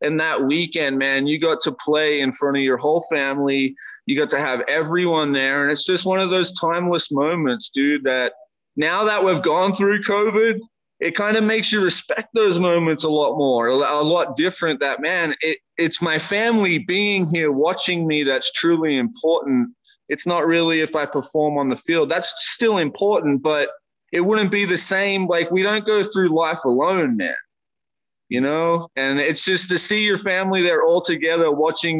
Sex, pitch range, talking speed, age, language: male, 145-190 Hz, 190 wpm, 20-39, English